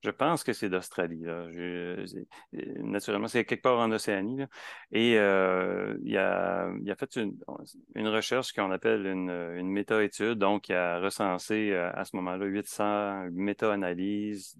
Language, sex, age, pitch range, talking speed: French, male, 30-49, 90-110 Hz, 150 wpm